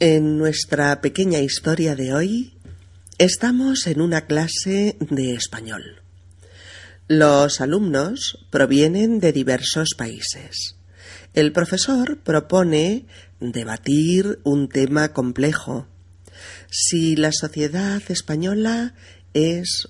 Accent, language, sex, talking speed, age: Spanish, Spanish, female, 90 wpm, 40-59